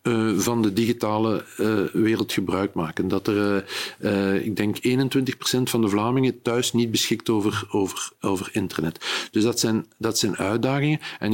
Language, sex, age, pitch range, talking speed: Dutch, male, 50-69, 105-120 Hz, 170 wpm